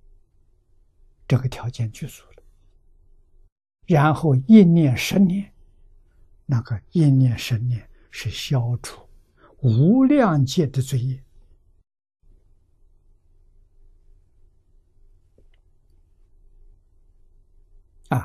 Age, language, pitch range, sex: 60-79, Chinese, 85-130 Hz, male